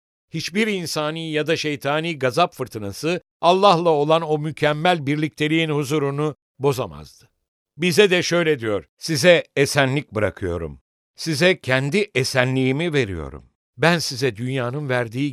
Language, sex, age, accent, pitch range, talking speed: English, male, 60-79, Turkish, 125-175 Hz, 115 wpm